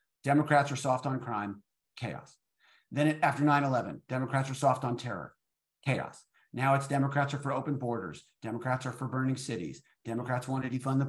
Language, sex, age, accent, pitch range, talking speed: English, male, 50-69, American, 130-150 Hz, 175 wpm